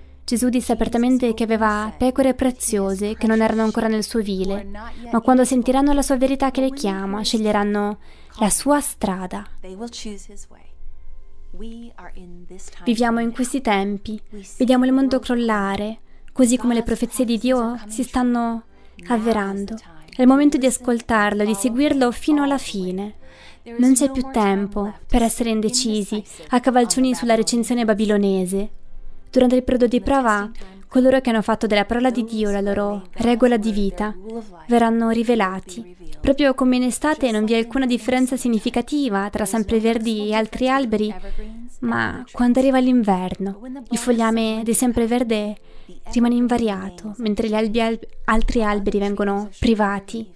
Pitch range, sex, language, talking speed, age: 205-250 Hz, female, Italian, 140 wpm, 20-39